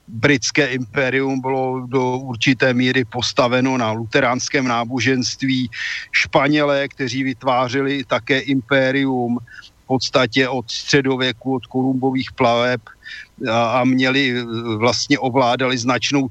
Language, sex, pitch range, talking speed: Slovak, male, 125-135 Hz, 105 wpm